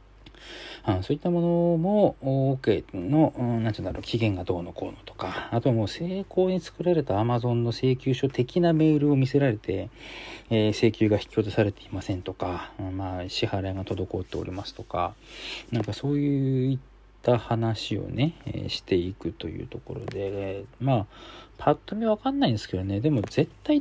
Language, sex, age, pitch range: Japanese, male, 40-59, 105-145 Hz